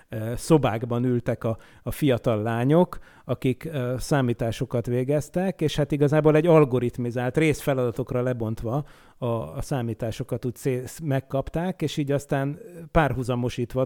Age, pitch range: 30-49, 125-155 Hz